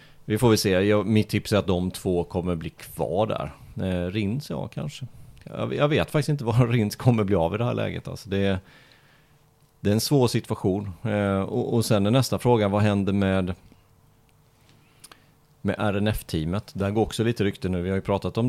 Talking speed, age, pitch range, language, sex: 205 wpm, 30-49, 90-125 Hz, Swedish, male